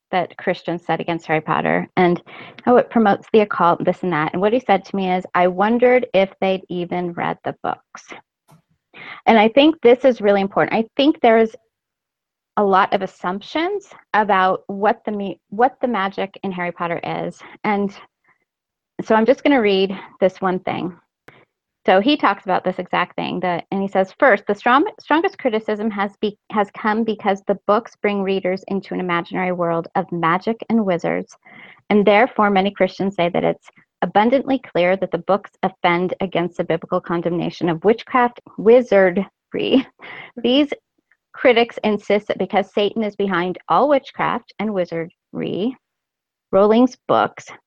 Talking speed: 165 wpm